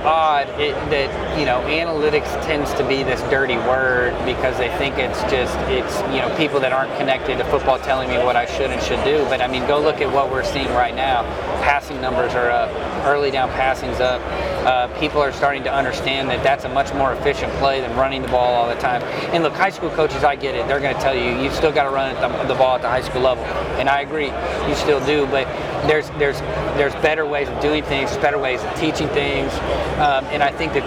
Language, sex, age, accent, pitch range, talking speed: English, male, 30-49, American, 130-155 Hz, 240 wpm